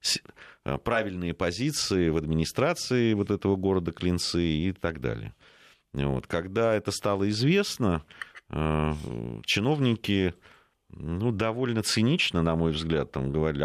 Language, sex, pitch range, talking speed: Russian, male, 70-95 Hz, 110 wpm